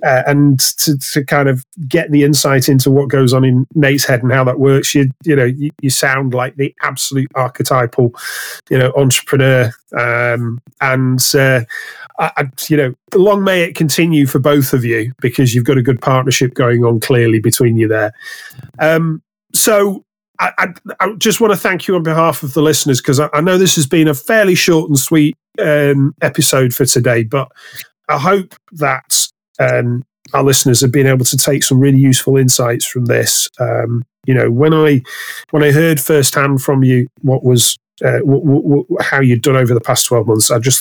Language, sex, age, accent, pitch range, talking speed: English, male, 30-49, British, 130-155 Hz, 195 wpm